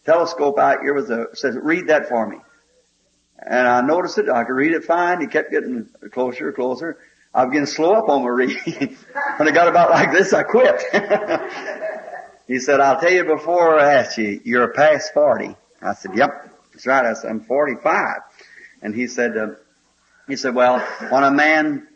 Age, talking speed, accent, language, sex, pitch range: 50-69, 195 wpm, American, English, male, 125-155 Hz